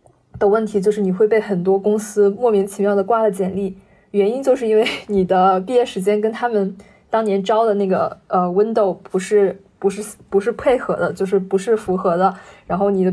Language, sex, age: Chinese, female, 20-39